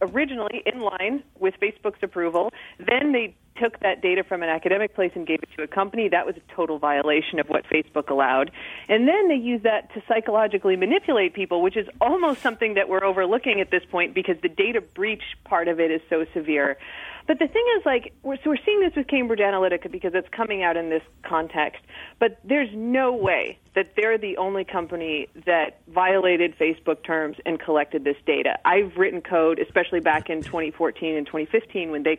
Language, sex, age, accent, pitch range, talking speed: English, female, 40-59, American, 175-245 Hz, 200 wpm